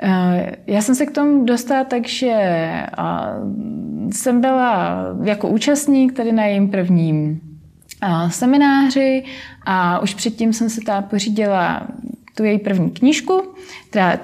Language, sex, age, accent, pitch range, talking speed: Czech, female, 20-39, native, 185-255 Hz, 120 wpm